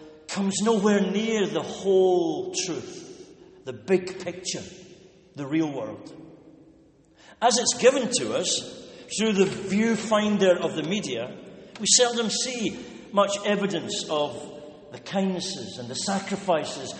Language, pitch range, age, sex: English, 175-210 Hz, 60-79, male